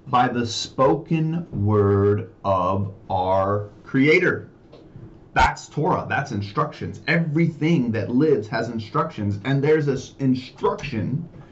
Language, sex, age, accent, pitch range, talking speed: English, male, 30-49, American, 105-140 Hz, 105 wpm